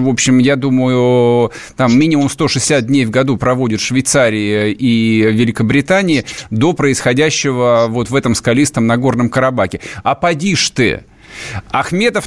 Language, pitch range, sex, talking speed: Russian, 135-195 Hz, male, 130 wpm